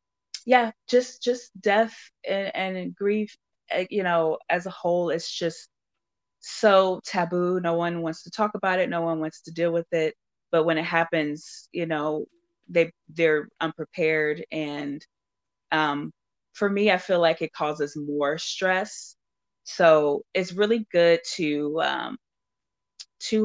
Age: 20-39